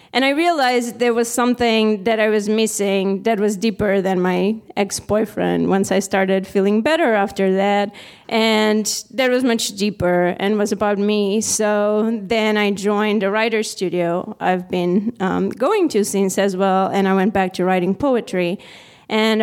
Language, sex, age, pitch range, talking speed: English, female, 30-49, 200-235 Hz, 170 wpm